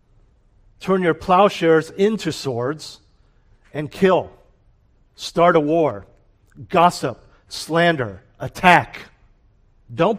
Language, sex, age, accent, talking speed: English, male, 50-69, American, 80 wpm